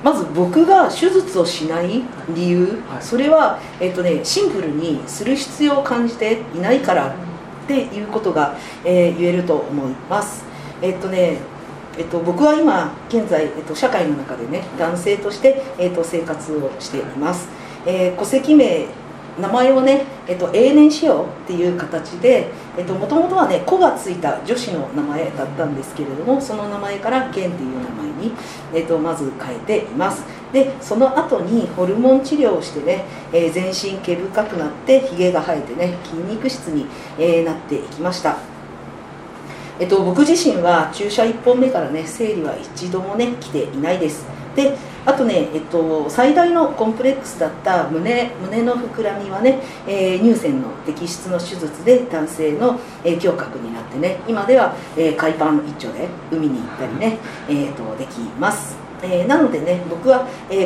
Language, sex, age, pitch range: Japanese, female, 50-69, 165-250 Hz